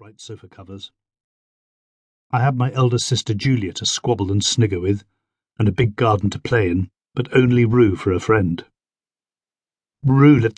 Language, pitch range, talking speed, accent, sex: English, 100-120 Hz, 165 wpm, British, male